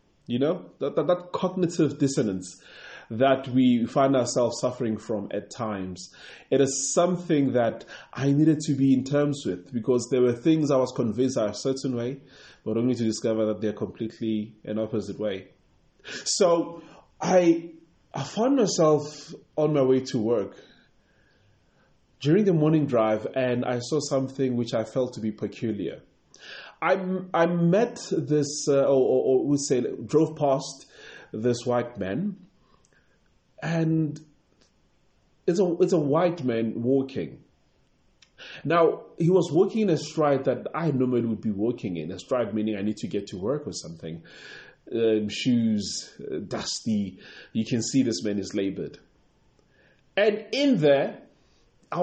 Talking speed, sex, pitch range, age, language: 155 wpm, male, 115-160 Hz, 20-39, English